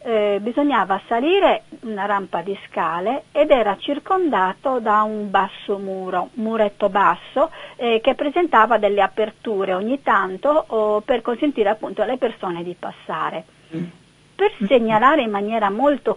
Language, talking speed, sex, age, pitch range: Italian, 135 wpm, female, 40-59, 195-255 Hz